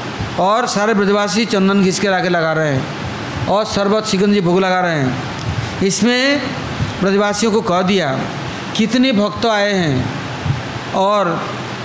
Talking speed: 140 wpm